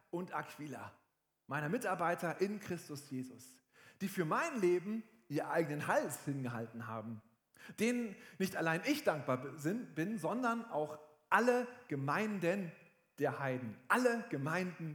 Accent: German